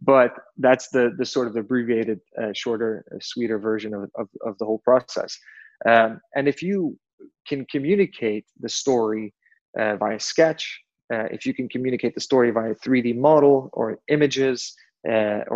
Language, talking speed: English, 160 wpm